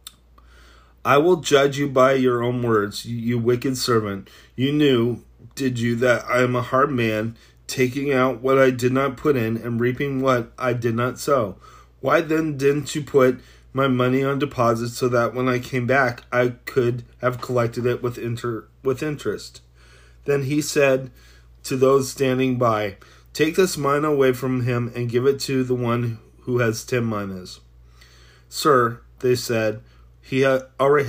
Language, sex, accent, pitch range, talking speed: English, male, American, 110-135 Hz, 170 wpm